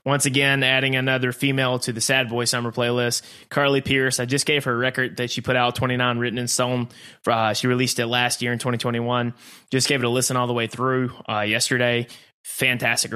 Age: 20-39